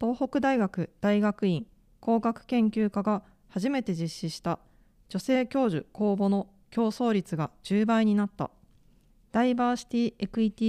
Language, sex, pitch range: Japanese, female, 180-230 Hz